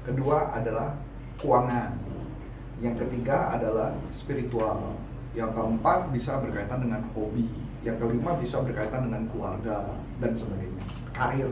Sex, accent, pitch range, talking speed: male, native, 115-140 Hz, 115 wpm